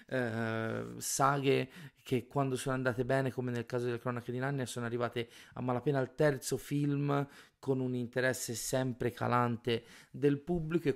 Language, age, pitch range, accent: Italian, 30-49, 115-135 Hz, native